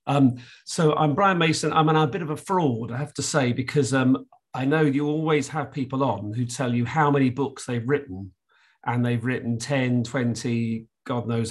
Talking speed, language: 205 wpm, English